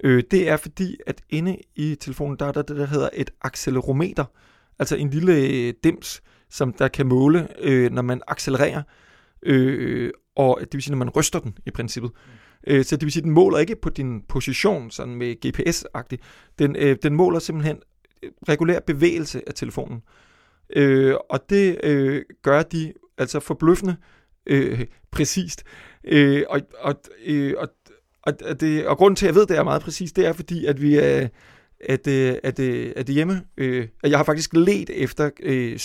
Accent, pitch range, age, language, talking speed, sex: native, 130-160 Hz, 30-49, Danish, 165 wpm, male